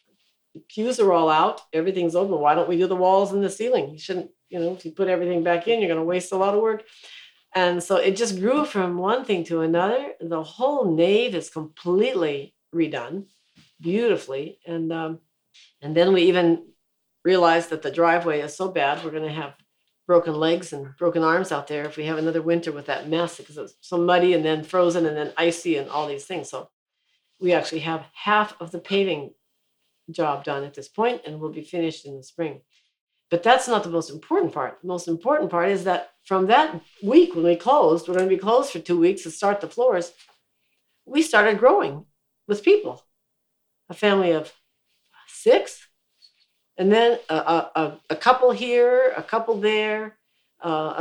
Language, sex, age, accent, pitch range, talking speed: English, female, 50-69, American, 160-205 Hz, 195 wpm